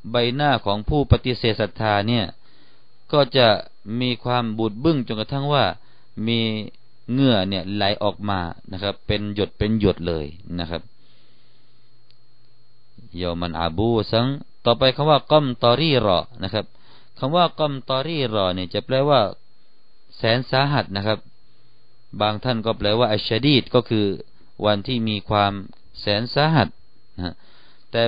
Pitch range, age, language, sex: 95-120 Hz, 30-49, Thai, male